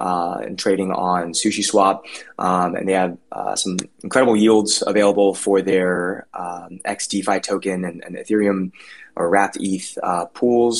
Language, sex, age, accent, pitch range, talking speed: English, male, 20-39, American, 95-100 Hz, 155 wpm